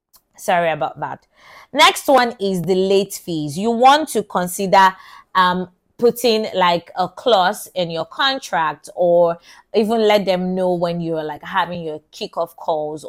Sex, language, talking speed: female, English, 150 wpm